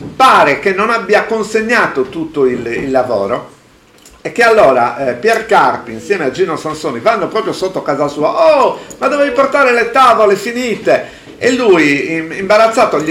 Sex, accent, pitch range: male, native, 140-230 Hz